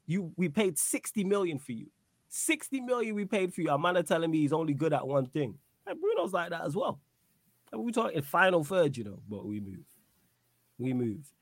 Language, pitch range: English, 130-170 Hz